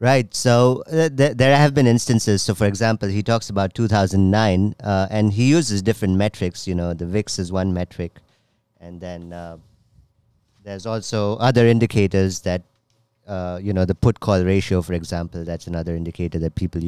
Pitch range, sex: 90-115 Hz, male